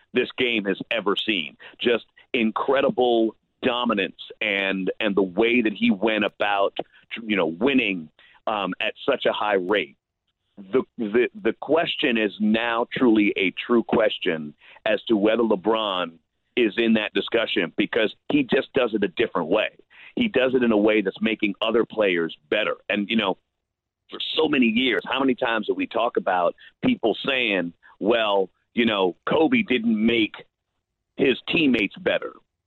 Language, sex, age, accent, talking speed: English, male, 40-59, American, 160 wpm